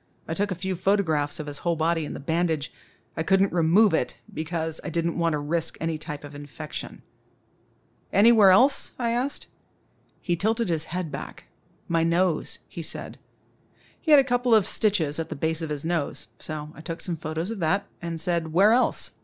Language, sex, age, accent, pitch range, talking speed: English, female, 40-59, American, 150-195 Hz, 195 wpm